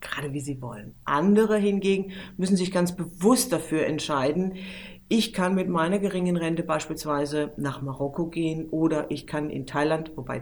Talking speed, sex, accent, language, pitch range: 160 wpm, female, German, German, 160-195 Hz